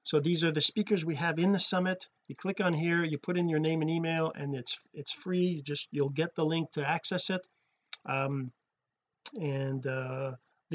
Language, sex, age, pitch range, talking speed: English, male, 40-59, 160-220 Hz, 205 wpm